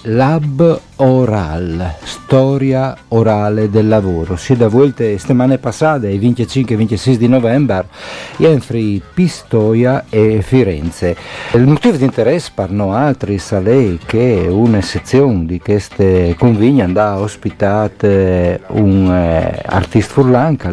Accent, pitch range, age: native, 90-120 Hz, 50-69